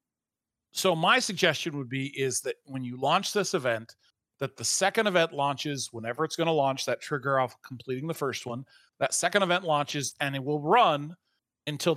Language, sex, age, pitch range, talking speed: English, male, 40-59, 130-170 Hz, 190 wpm